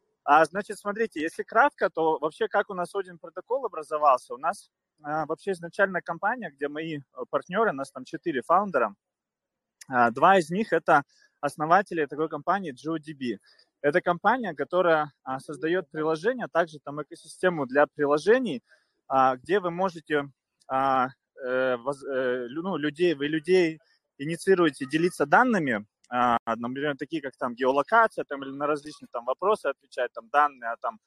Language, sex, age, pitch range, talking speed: Russian, male, 20-39, 145-190 Hz, 140 wpm